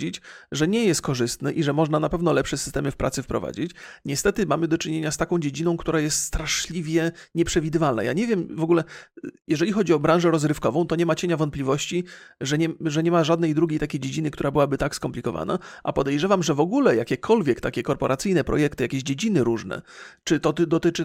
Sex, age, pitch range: male, 40-59, 140-170 Hz